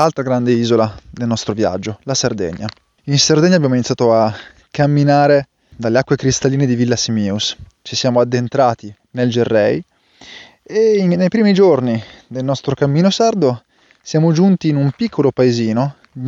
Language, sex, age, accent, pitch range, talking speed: Italian, male, 20-39, native, 110-140 Hz, 145 wpm